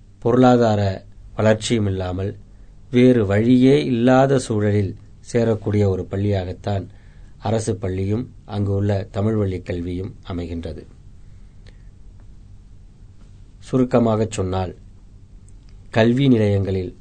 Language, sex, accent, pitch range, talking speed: Tamil, male, native, 95-110 Hz, 75 wpm